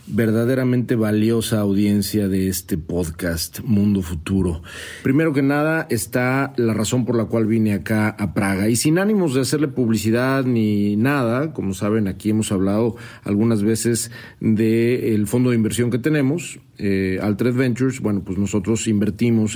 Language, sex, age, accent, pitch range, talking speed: Spanish, male, 40-59, Mexican, 110-130 Hz, 150 wpm